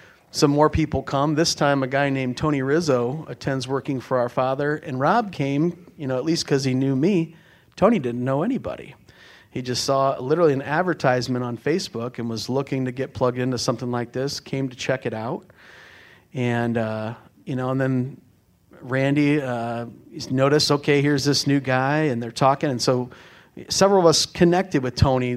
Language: English